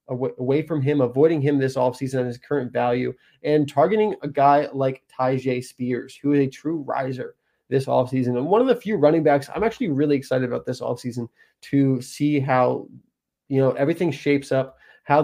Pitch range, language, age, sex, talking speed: 130-155 Hz, English, 20-39, male, 190 wpm